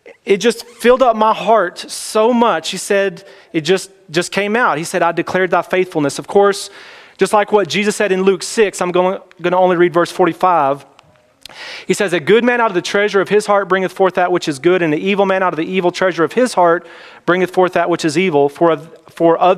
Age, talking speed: 30-49, 240 wpm